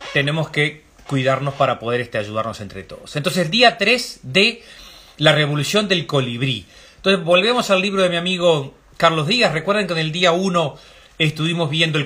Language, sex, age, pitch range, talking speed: Spanish, male, 30-49, 135-180 Hz, 175 wpm